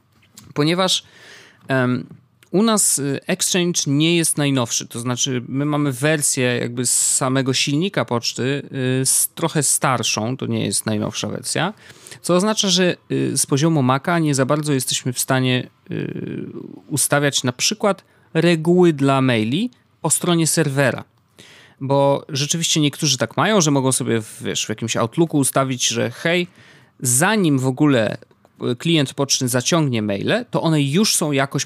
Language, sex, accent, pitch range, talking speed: Polish, male, native, 120-155 Hz, 150 wpm